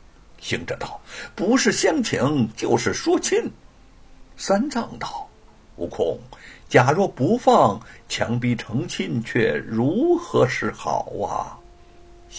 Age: 60-79